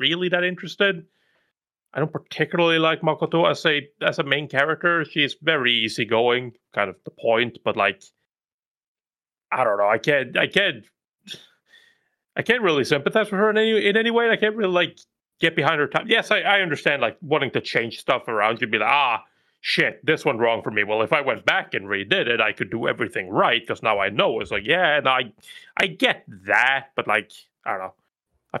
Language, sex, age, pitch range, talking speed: English, male, 30-49, 115-180 Hz, 210 wpm